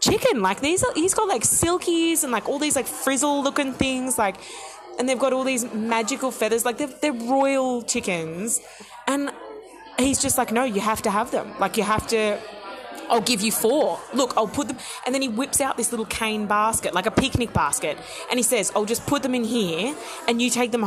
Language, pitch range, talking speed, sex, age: English, 195-275 Hz, 220 wpm, female, 20-39